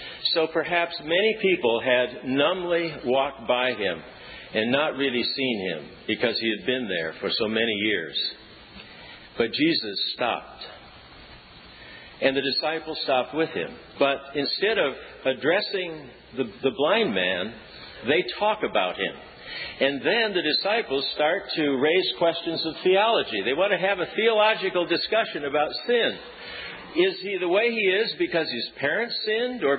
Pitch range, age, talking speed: 135-215 Hz, 50-69, 150 wpm